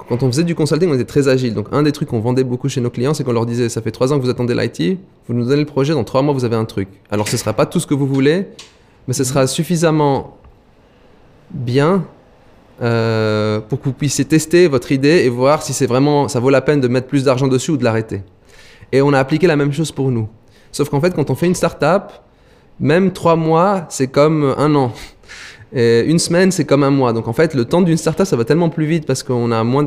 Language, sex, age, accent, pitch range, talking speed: French, male, 20-39, French, 125-155 Hz, 260 wpm